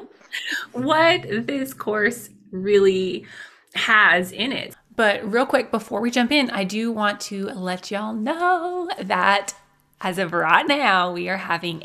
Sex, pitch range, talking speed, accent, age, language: female, 170-220 Hz, 145 wpm, American, 20-39, English